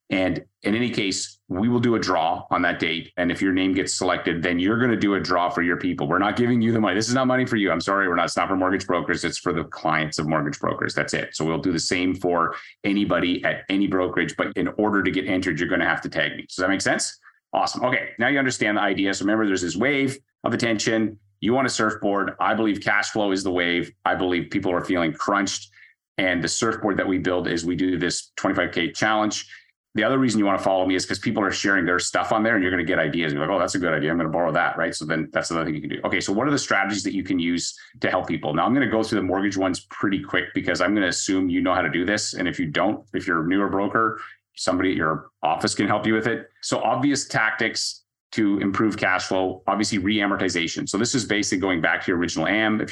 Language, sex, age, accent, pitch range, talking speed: English, male, 30-49, American, 90-110 Hz, 270 wpm